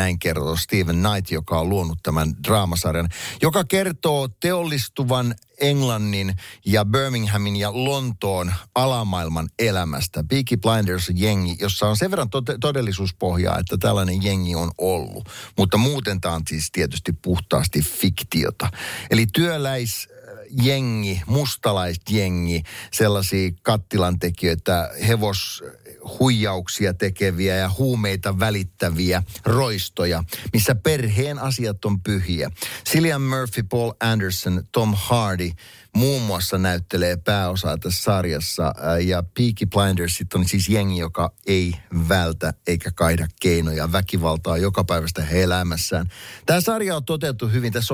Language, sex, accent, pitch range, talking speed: Finnish, male, native, 90-120 Hz, 115 wpm